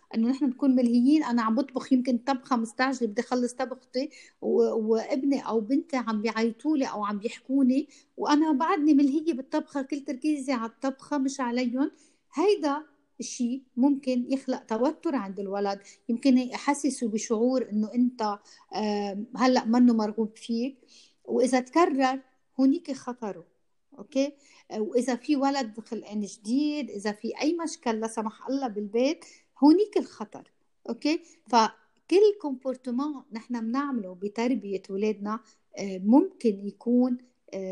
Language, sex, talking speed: Arabic, female, 120 wpm